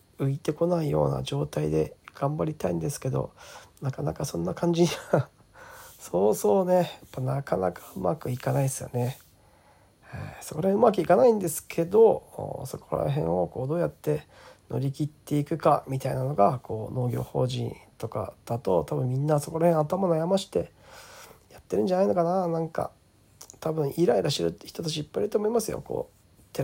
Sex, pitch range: male, 125-170 Hz